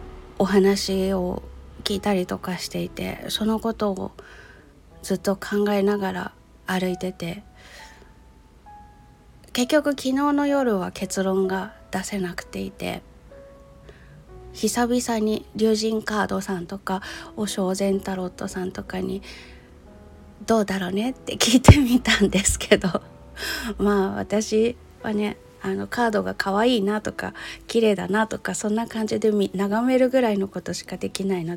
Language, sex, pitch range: Japanese, female, 185-220 Hz